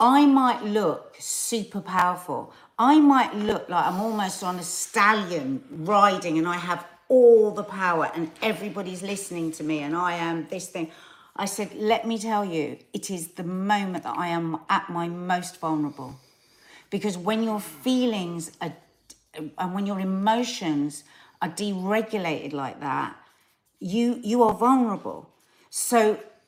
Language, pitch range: English, 165-210 Hz